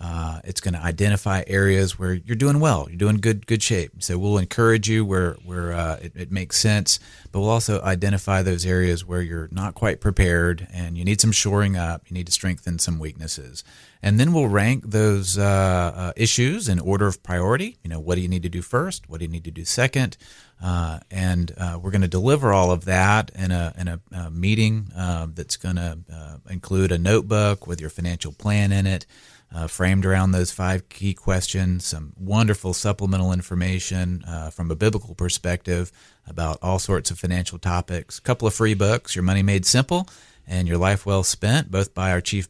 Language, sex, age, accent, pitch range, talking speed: English, male, 40-59, American, 90-105 Hz, 210 wpm